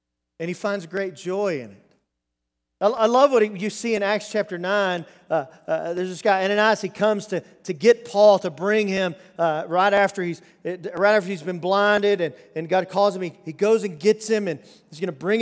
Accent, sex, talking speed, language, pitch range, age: American, male, 220 wpm, English, 130-205 Hz, 40-59